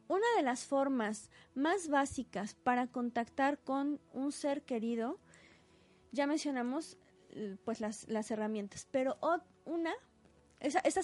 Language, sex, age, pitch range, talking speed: Spanish, female, 20-39, 225-285 Hz, 115 wpm